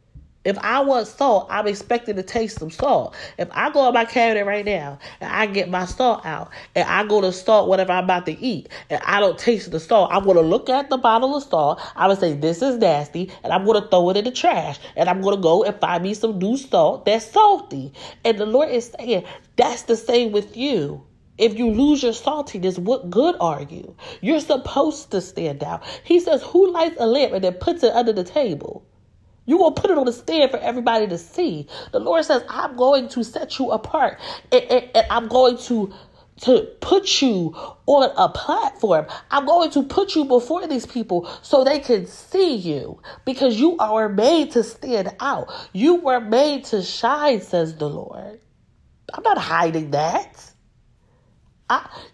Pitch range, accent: 190-270 Hz, American